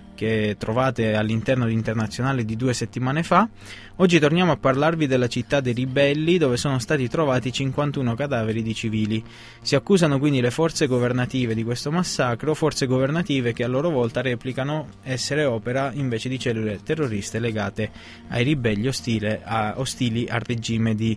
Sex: male